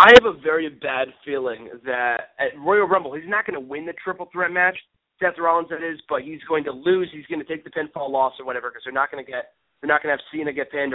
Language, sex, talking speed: English, male, 280 wpm